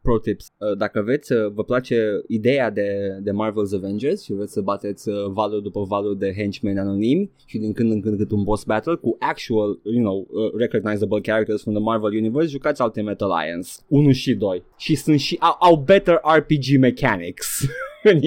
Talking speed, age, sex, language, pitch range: 205 wpm, 20-39, male, Romanian, 110-140 Hz